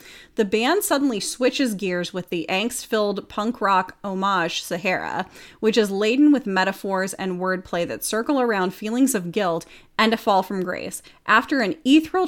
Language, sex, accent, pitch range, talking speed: English, female, American, 185-230 Hz, 160 wpm